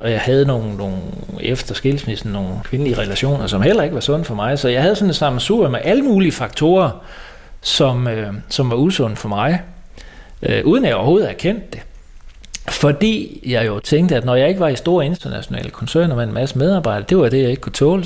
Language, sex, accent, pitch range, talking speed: Danish, male, native, 115-155 Hz, 220 wpm